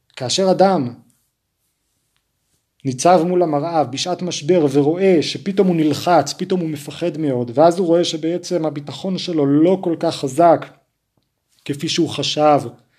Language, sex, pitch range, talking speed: Hebrew, male, 145-185 Hz, 130 wpm